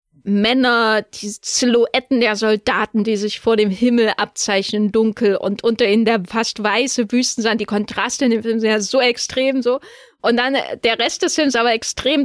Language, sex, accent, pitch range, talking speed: German, female, German, 225-280 Hz, 185 wpm